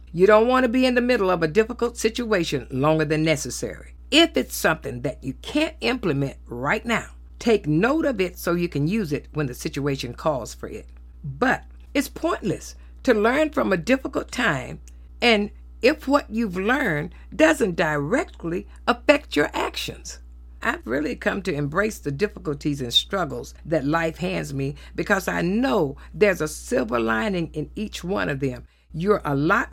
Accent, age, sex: American, 50-69, female